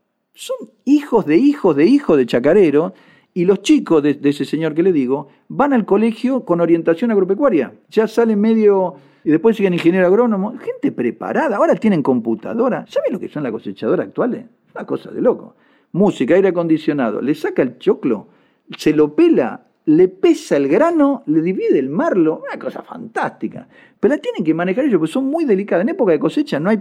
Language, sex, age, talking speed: Spanish, male, 50-69, 190 wpm